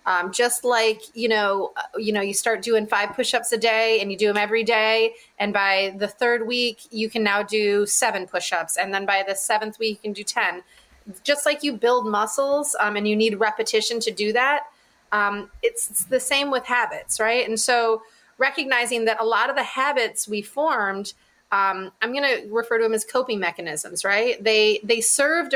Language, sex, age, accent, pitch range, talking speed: English, female, 30-49, American, 210-250 Hz, 210 wpm